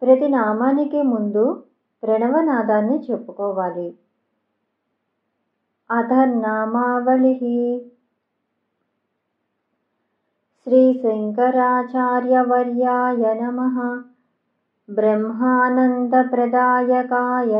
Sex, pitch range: male, 240-250 Hz